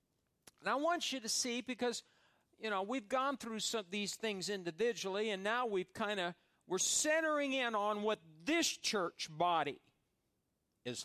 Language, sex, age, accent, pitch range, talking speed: English, male, 50-69, American, 215-285 Hz, 170 wpm